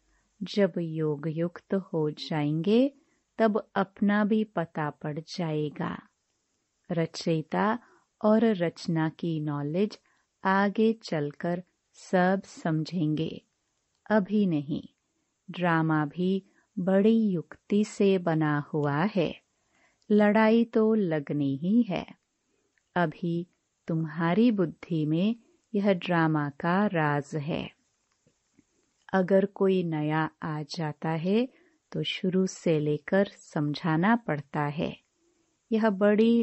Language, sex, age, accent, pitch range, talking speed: Hindi, female, 30-49, native, 160-215 Hz, 95 wpm